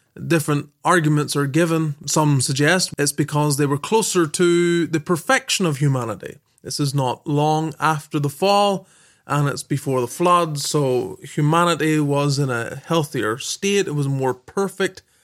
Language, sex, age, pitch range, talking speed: English, male, 20-39, 140-165 Hz, 160 wpm